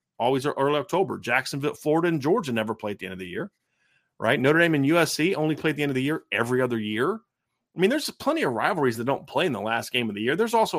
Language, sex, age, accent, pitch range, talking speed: English, male, 30-49, American, 115-155 Hz, 275 wpm